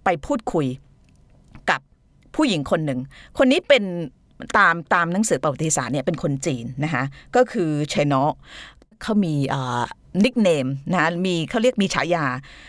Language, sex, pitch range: Thai, female, 140-195 Hz